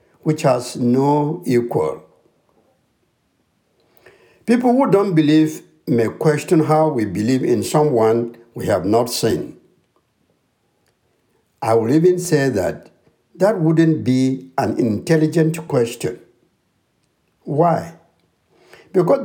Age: 60-79